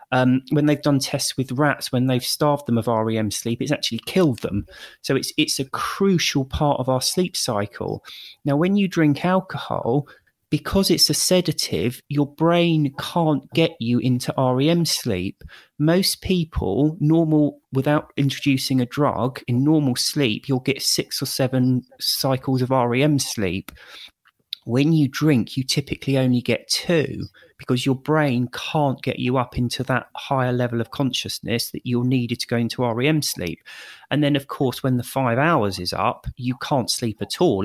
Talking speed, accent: 170 wpm, British